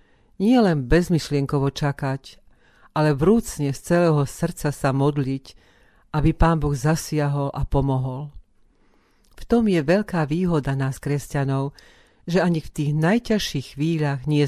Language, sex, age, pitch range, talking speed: Slovak, female, 40-59, 140-165 Hz, 130 wpm